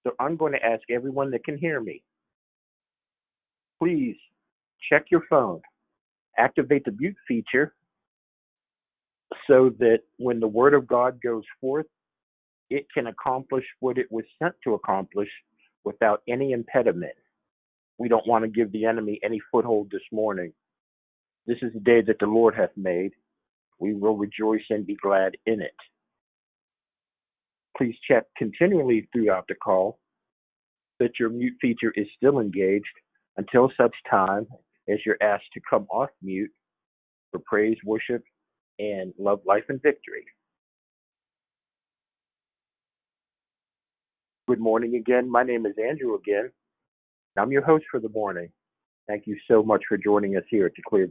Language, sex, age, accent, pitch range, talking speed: English, male, 50-69, American, 105-130 Hz, 145 wpm